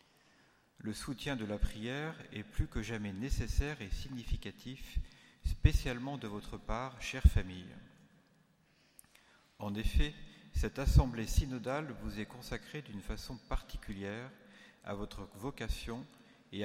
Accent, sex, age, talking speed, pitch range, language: French, male, 50-69, 120 wpm, 100-130 Hz, French